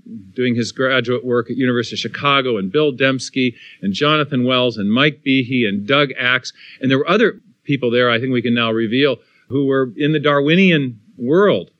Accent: American